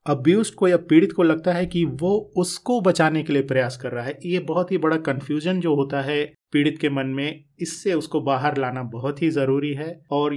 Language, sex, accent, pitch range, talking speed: Hindi, male, native, 140-160 Hz, 220 wpm